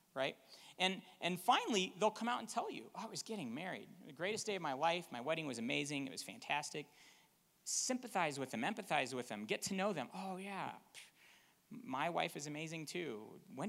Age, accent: 40-59, American